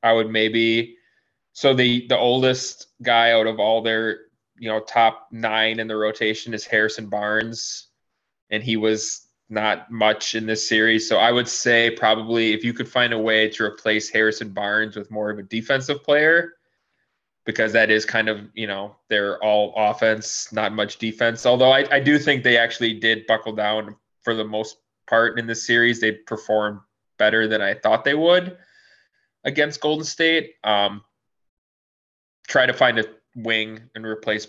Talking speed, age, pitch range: 175 wpm, 20-39, 110-120 Hz